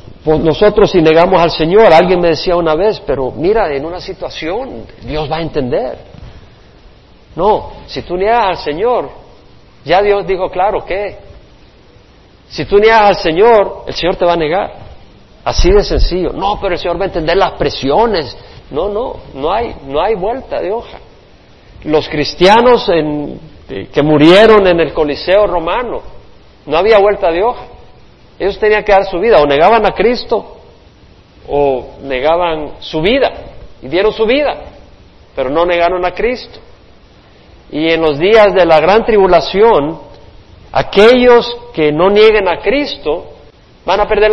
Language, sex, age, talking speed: Spanish, male, 50-69, 155 wpm